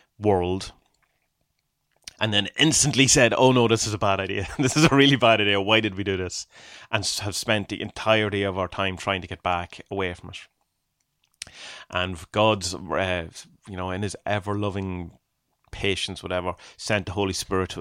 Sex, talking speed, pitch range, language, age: male, 180 wpm, 95-120 Hz, English, 30-49